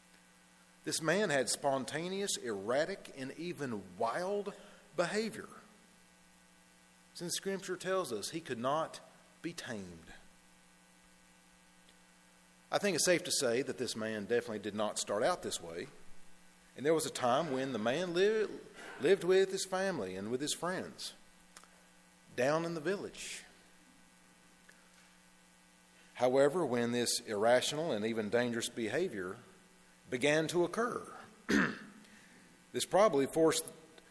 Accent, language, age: American, English, 40-59